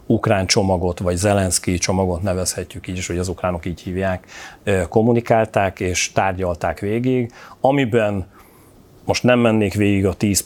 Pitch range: 95-110 Hz